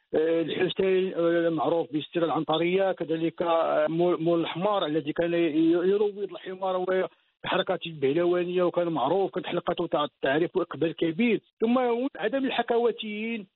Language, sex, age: Arabic, male, 50-69